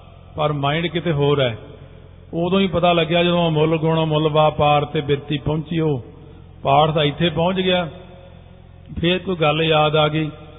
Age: 50-69